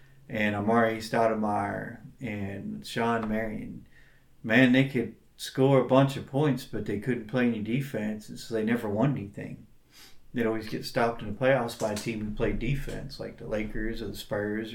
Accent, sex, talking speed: American, male, 185 wpm